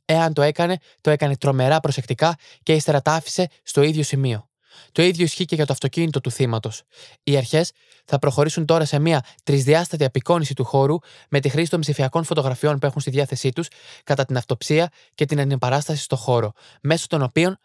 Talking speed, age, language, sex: 190 wpm, 20-39, Greek, male